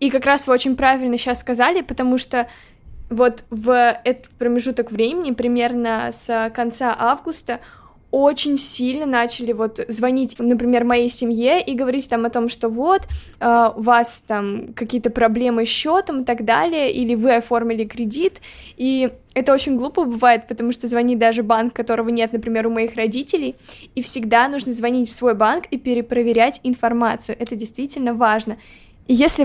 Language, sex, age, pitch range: Russian, female, 10-29, 235-265 Hz